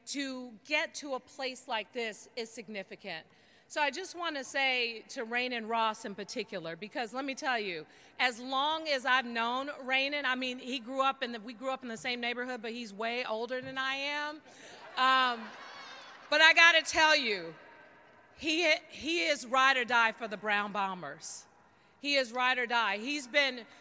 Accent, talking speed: American, 190 wpm